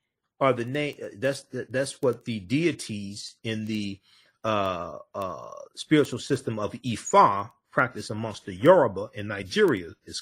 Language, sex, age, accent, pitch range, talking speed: English, male, 40-59, American, 110-140 Hz, 140 wpm